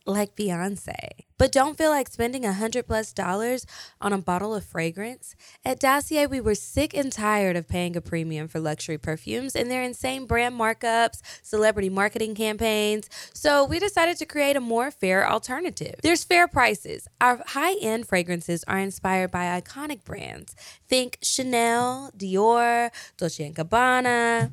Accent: American